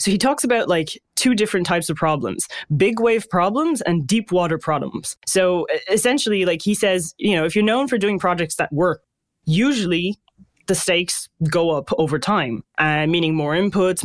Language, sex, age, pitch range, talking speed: English, male, 20-39, 160-200 Hz, 185 wpm